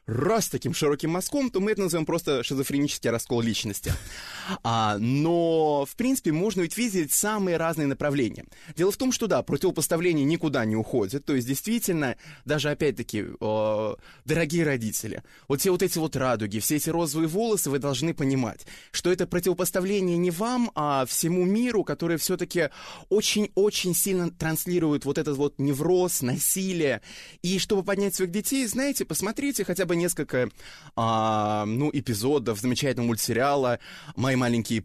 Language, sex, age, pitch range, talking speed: Russian, male, 20-39, 115-170 Hz, 145 wpm